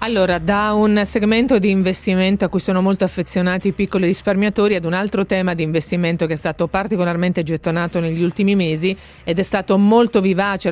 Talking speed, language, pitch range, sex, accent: 185 wpm, Italian, 170-205 Hz, female, native